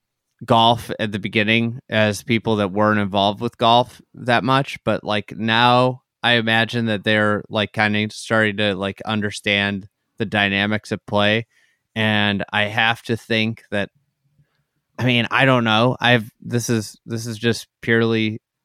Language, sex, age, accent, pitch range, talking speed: English, male, 20-39, American, 105-125 Hz, 160 wpm